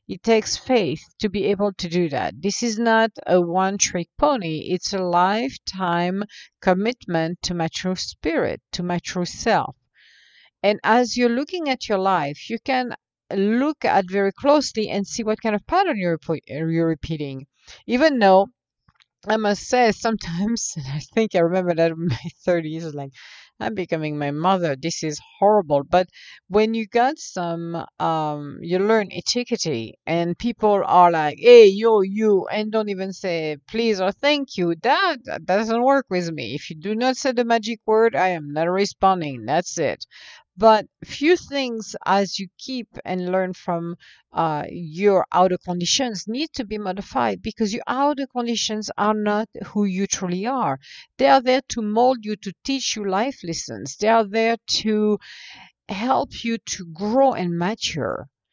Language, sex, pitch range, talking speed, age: English, female, 180-235 Hz, 170 wpm, 50-69